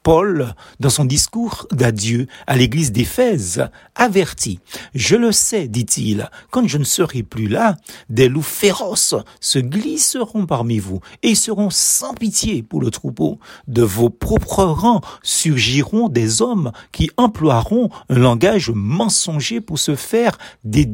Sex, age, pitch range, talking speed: male, 60-79, 120-200 Hz, 140 wpm